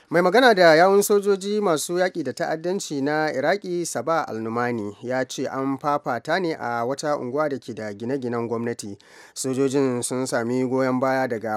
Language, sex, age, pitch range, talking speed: English, male, 30-49, 120-150 Hz, 155 wpm